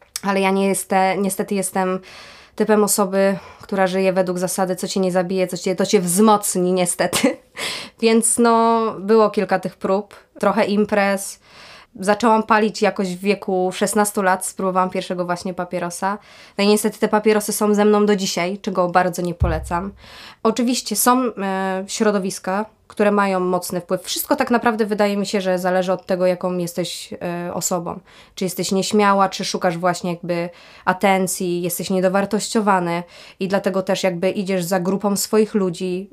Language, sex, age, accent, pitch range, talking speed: Polish, female, 20-39, native, 185-210 Hz, 155 wpm